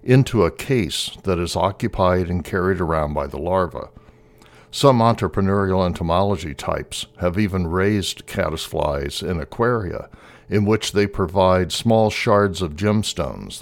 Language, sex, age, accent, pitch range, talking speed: English, male, 60-79, American, 85-110 Hz, 130 wpm